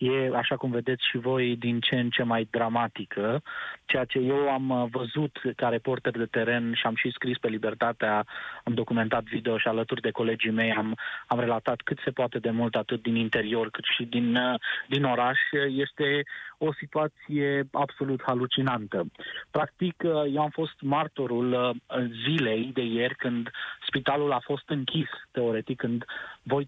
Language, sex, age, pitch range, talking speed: Romanian, male, 20-39, 120-140 Hz, 160 wpm